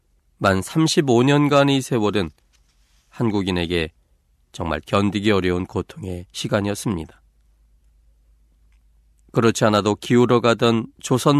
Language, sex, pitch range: Korean, male, 75-125 Hz